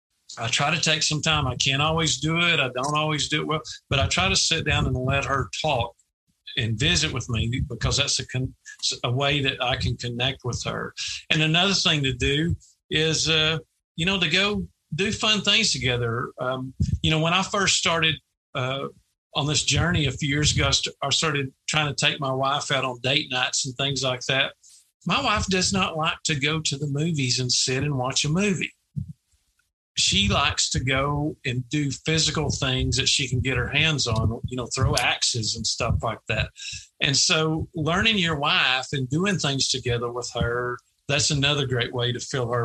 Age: 50-69